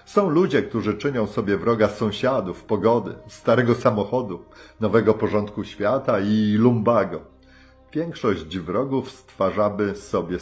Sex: male